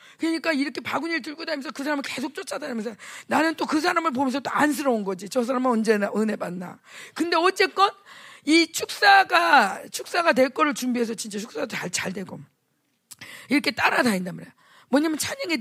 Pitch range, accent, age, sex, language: 225-320 Hz, native, 40-59, female, Korean